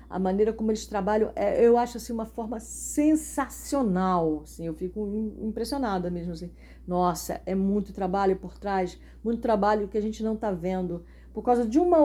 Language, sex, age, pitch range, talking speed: Portuguese, female, 50-69, 155-220 Hz, 175 wpm